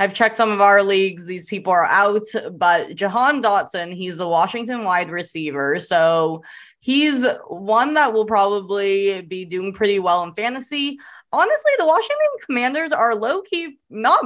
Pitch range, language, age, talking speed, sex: 170-230 Hz, English, 20-39, 160 wpm, female